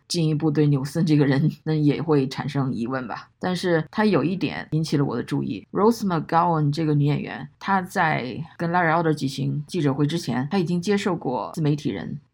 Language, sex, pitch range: Chinese, female, 140-170 Hz